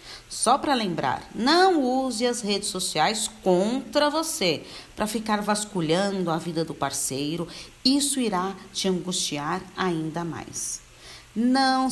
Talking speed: 120 wpm